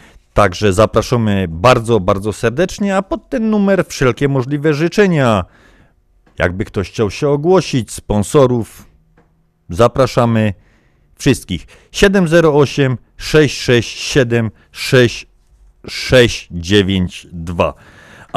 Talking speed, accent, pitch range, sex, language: 70 wpm, native, 95-130 Hz, male, Polish